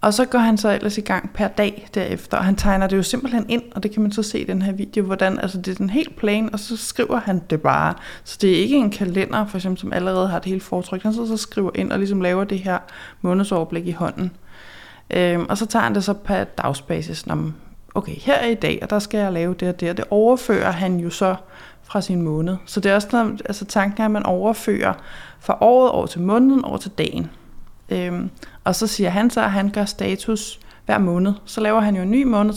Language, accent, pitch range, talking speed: Danish, native, 180-215 Hz, 250 wpm